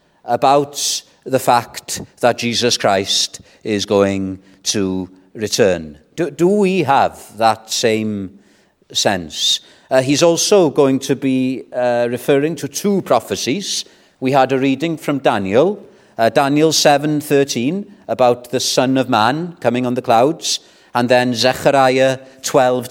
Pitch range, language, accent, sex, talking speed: 110-145 Hz, English, British, male, 135 wpm